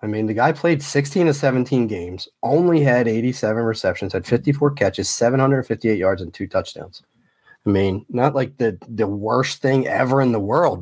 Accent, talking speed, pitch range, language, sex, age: American, 185 wpm, 110-145 Hz, English, male, 30-49